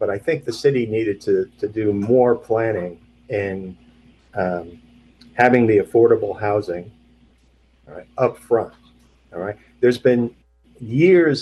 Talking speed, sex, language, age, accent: 135 wpm, male, English, 40-59, American